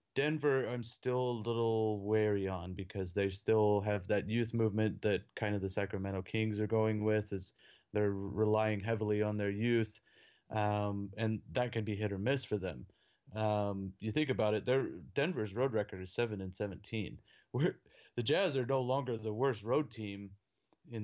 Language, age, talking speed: English, 30-49, 185 wpm